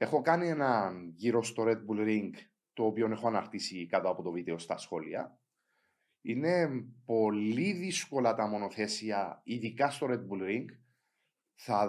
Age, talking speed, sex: 30-49, 145 wpm, male